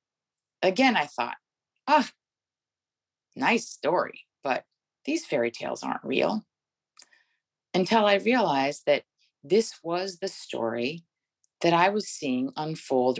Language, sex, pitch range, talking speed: English, female, 135-200 Hz, 120 wpm